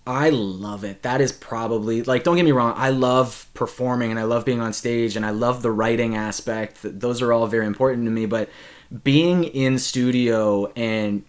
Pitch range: 110-130 Hz